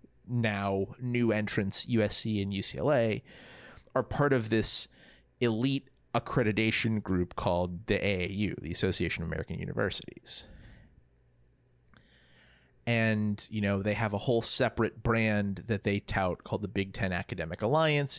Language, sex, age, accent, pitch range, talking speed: English, male, 30-49, American, 95-120 Hz, 130 wpm